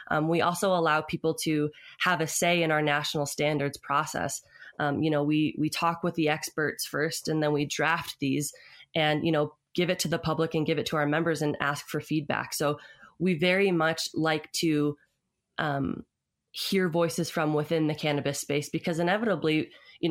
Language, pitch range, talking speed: English, 145-160 Hz, 190 wpm